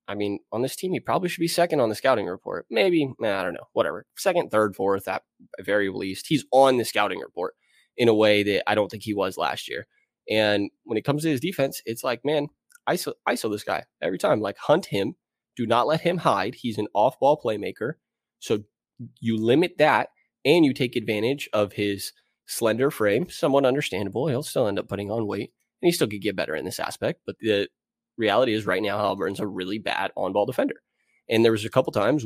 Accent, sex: American, male